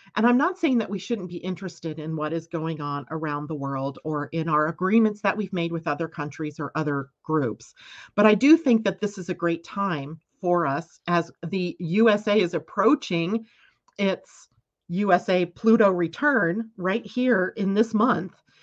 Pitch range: 160-220 Hz